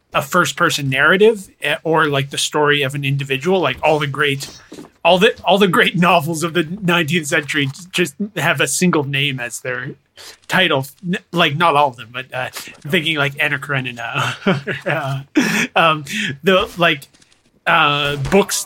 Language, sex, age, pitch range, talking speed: English, male, 30-49, 135-175 Hz, 160 wpm